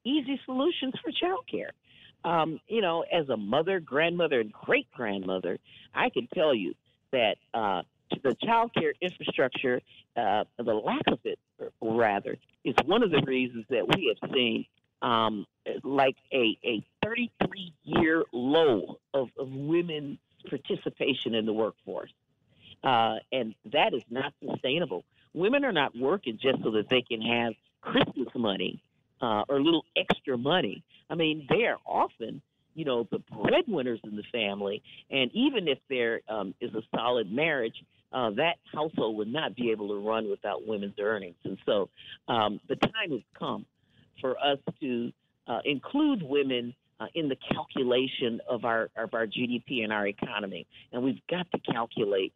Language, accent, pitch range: English, American, 115-170 Hz